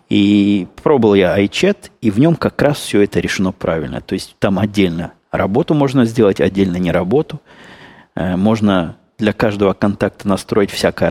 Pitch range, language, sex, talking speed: 95-115 Hz, Russian, male, 155 wpm